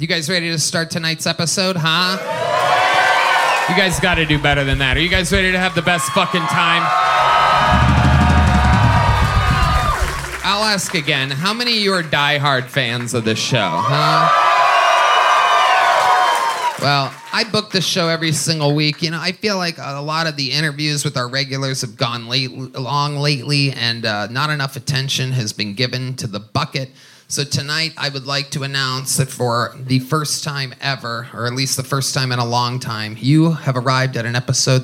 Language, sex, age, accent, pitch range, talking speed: English, male, 30-49, American, 130-165 Hz, 185 wpm